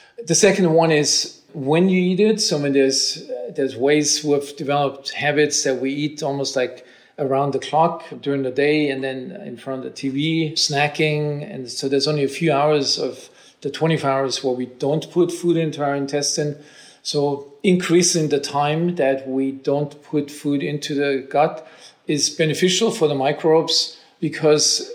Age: 40-59